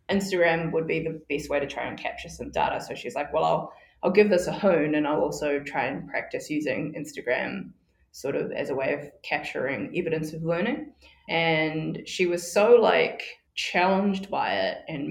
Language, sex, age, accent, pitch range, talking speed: English, female, 20-39, Australian, 155-180 Hz, 195 wpm